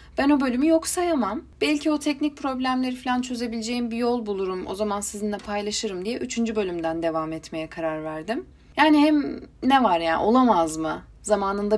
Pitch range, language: 180-265 Hz, Turkish